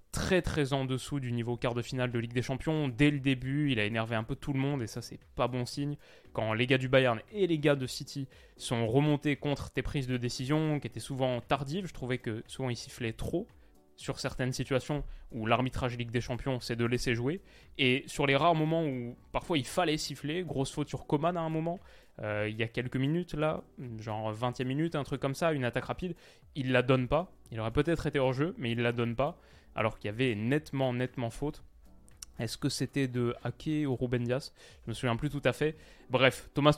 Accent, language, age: French, French, 20-39